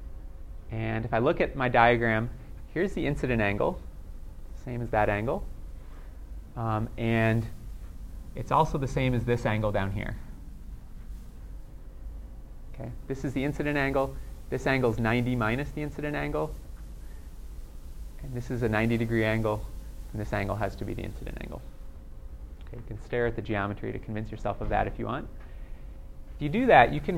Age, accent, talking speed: 30-49, American, 170 wpm